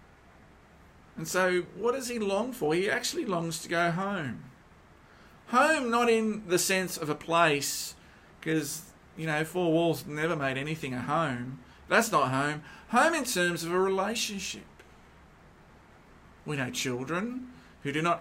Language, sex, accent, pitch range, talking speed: English, male, Australian, 140-195 Hz, 150 wpm